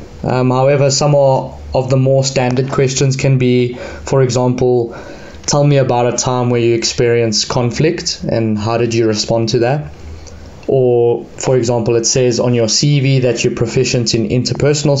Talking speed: 170 wpm